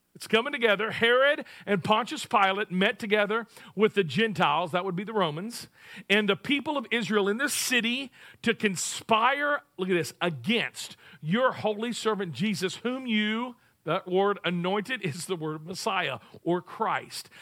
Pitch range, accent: 175-225 Hz, American